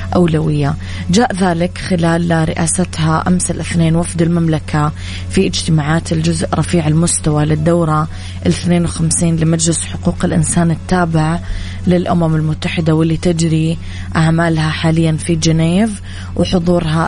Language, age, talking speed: Arabic, 20-39, 100 wpm